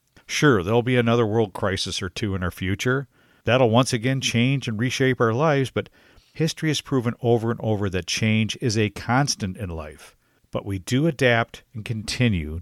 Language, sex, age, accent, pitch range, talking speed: English, male, 50-69, American, 95-130 Hz, 185 wpm